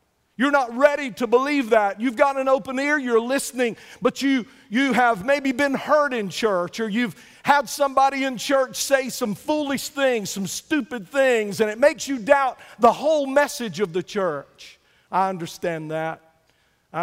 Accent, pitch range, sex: American, 155-195 Hz, male